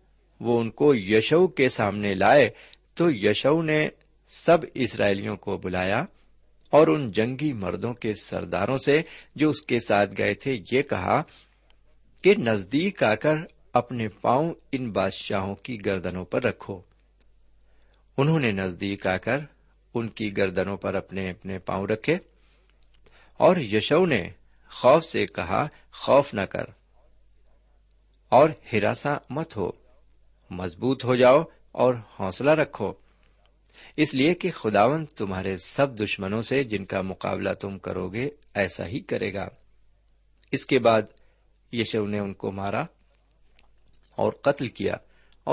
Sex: male